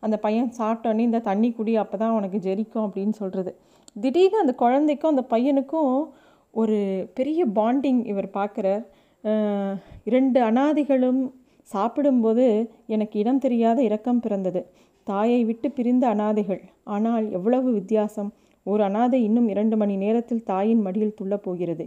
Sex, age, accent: female, 30-49, native